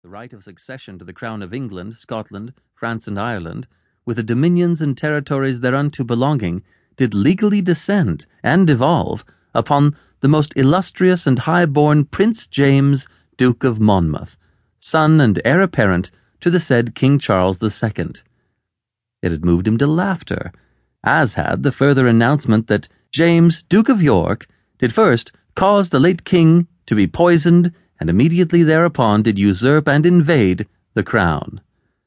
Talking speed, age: 150 wpm, 30-49